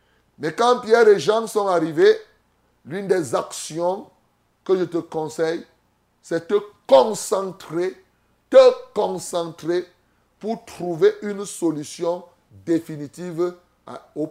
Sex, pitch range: male, 155-225 Hz